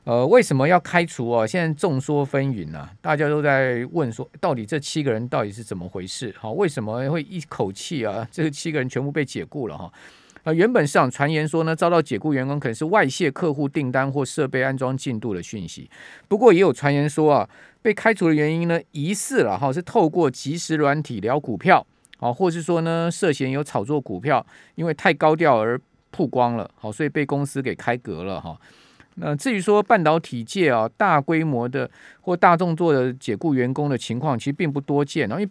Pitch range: 130-165 Hz